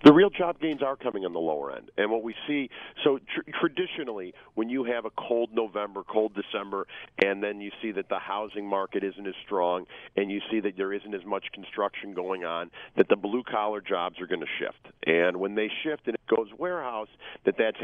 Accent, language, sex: American, English, male